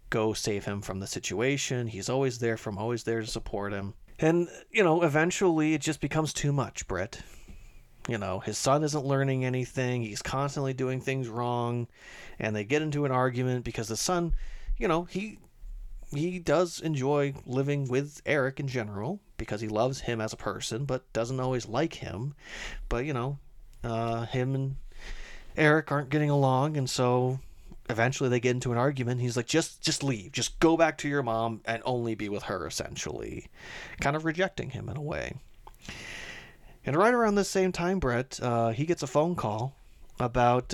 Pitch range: 115-145 Hz